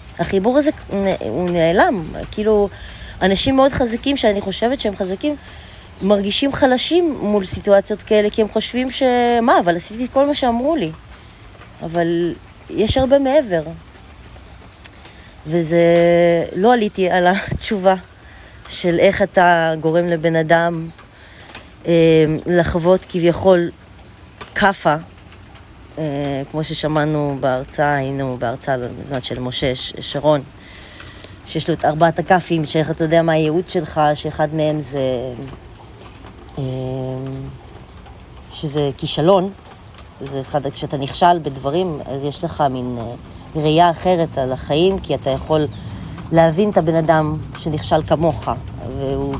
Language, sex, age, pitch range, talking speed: Hebrew, female, 20-39, 135-190 Hz, 120 wpm